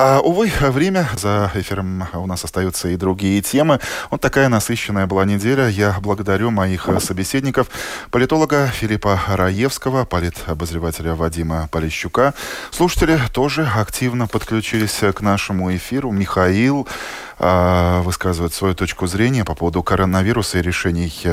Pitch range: 85-120 Hz